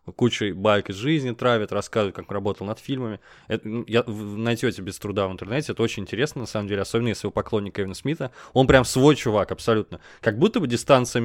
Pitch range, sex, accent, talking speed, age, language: 110-130 Hz, male, native, 205 wpm, 20-39, Russian